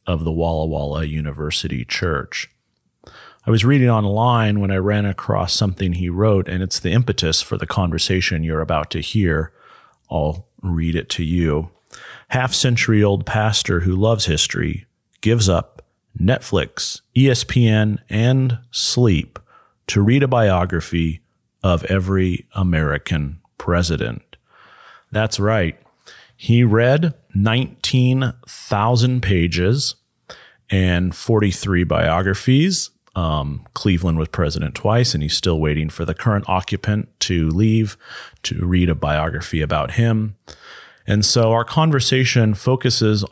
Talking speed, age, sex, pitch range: 125 wpm, 30-49, male, 85-120 Hz